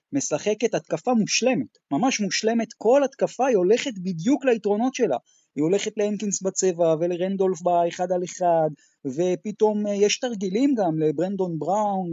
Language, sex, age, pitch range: Hebrew, male, 30-49, 165-225 Hz